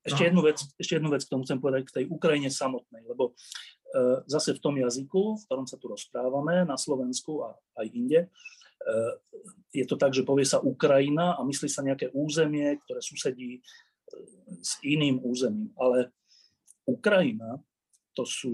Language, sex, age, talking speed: Slovak, male, 30-49, 170 wpm